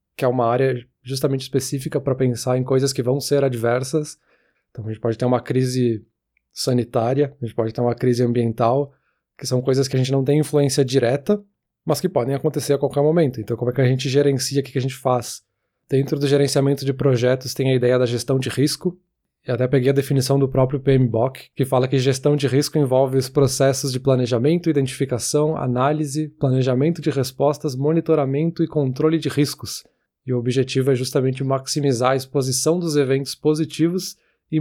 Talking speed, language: 190 wpm, Portuguese